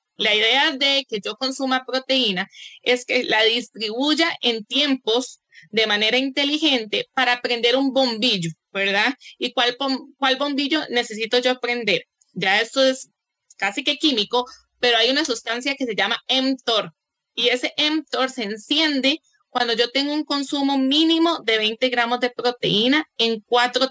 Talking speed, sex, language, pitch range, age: 150 wpm, female, English, 235-295 Hz, 20-39